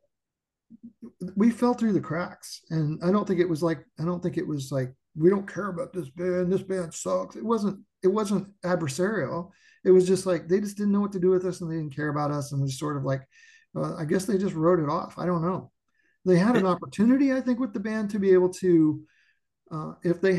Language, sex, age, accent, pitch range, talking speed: English, male, 50-69, American, 155-195 Hz, 240 wpm